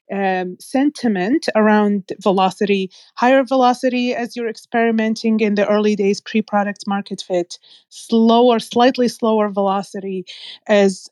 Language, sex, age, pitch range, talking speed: English, female, 30-49, 200-230 Hz, 120 wpm